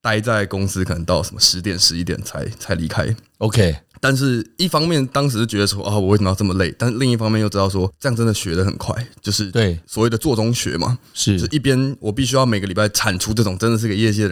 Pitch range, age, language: 95-125 Hz, 20-39, Chinese